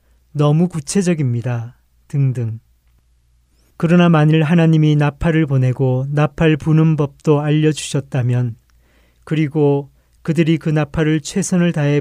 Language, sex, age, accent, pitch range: Korean, male, 40-59, native, 125-160 Hz